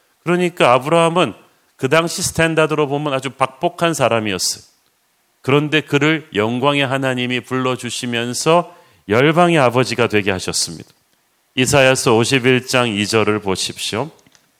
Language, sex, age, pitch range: Korean, male, 40-59, 120-150 Hz